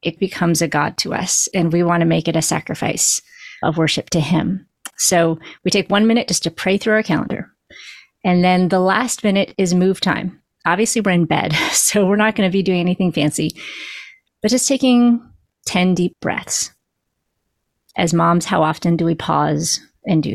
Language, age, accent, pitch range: English, 30-49, American, 170-205 Hz